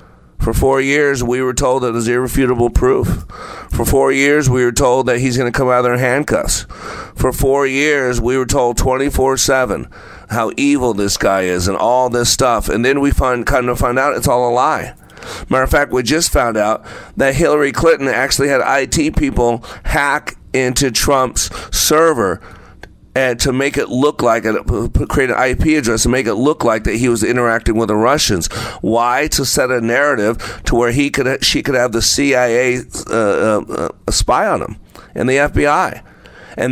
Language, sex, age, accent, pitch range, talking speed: English, male, 40-59, American, 120-140 Hz, 195 wpm